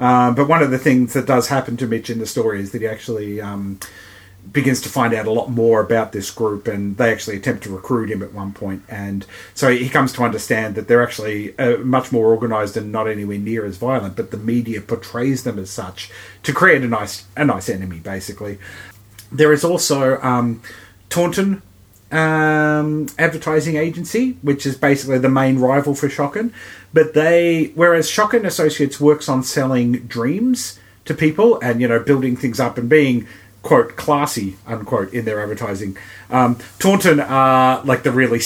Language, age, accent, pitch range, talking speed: English, 30-49, Australian, 105-140 Hz, 185 wpm